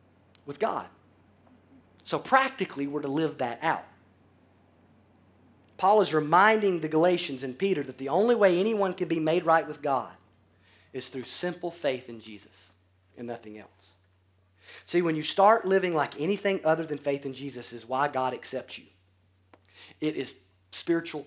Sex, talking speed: male, 160 wpm